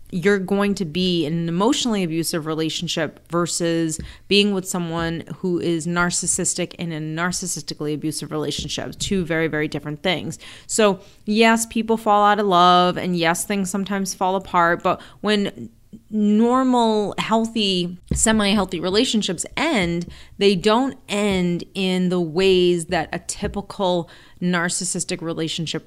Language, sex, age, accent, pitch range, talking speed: English, female, 30-49, American, 170-200 Hz, 130 wpm